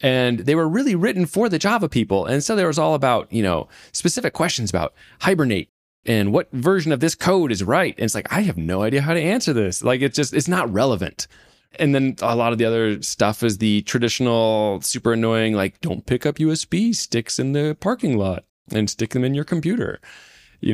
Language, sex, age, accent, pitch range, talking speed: English, male, 20-39, American, 100-140 Hz, 220 wpm